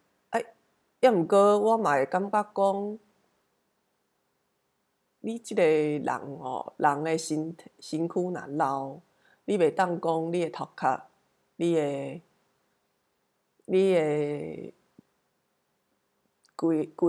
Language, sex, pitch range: Chinese, female, 145-190 Hz